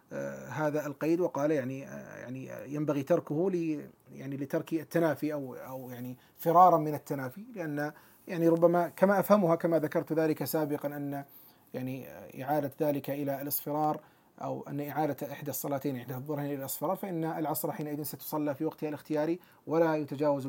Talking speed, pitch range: 145 wpm, 145-195 Hz